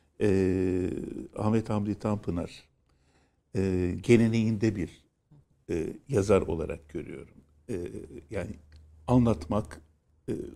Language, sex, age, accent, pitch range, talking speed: Turkish, male, 60-79, native, 95-140 Hz, 85 wpm